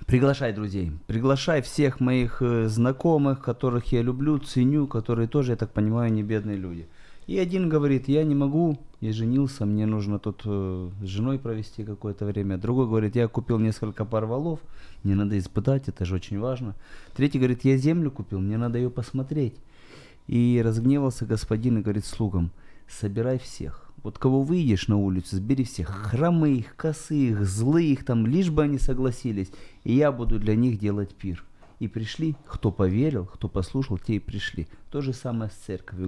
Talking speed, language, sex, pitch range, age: 170 wpm, Ukrainian, male, 100-130 Hz, 30-49